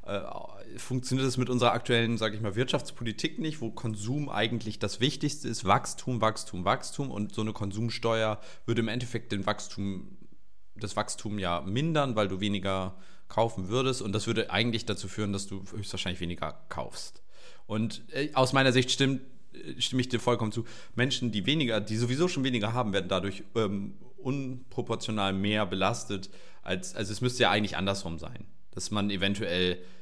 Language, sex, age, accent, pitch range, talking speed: German, male, 30-49, German, 105-125 Hz, 165 wpm